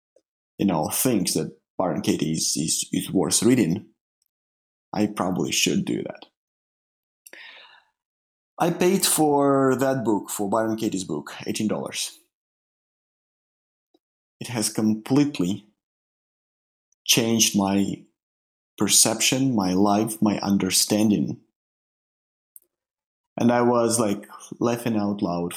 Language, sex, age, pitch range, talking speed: English, male, 30-49, 100-125 Hz, 100 wpm